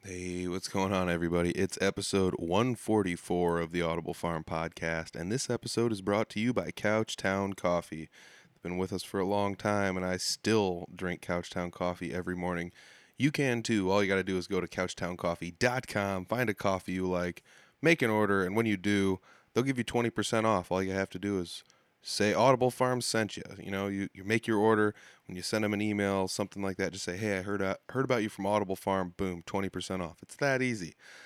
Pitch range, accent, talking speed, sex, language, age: 90-110 Hz, American, 215 wpm, male, English, 20-39